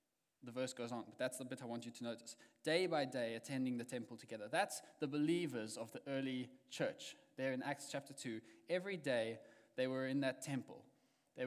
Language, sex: English, male